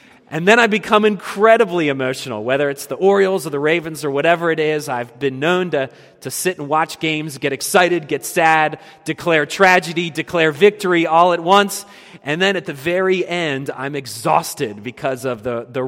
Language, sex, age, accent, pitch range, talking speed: English, male, 30-49, American, 140-185 Hz, 185 wpm